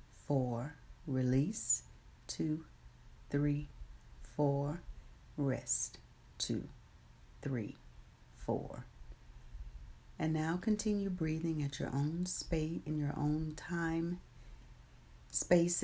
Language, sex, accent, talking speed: English, female, American, 85 wpm